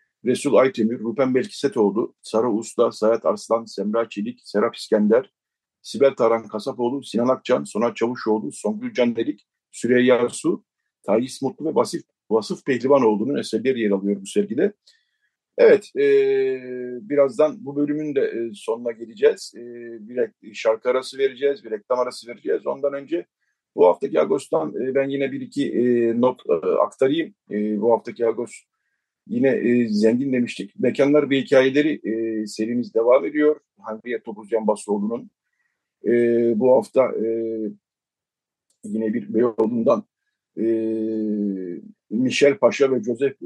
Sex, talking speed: male, 135 wpm